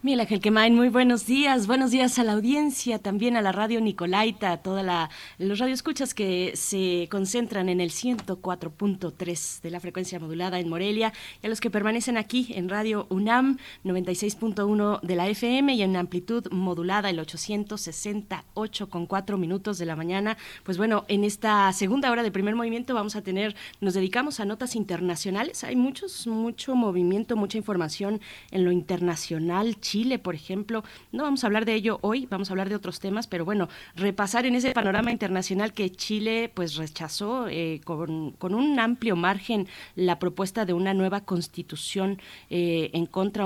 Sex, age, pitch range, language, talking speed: female, 20-39, 175-220 Hz, Spanish, 170 wpm